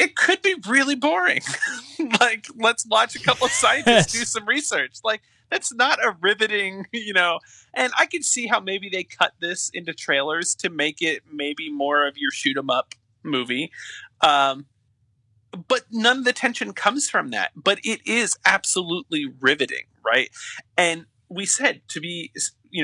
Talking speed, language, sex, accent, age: 170 wpm, English, male, American, 30-49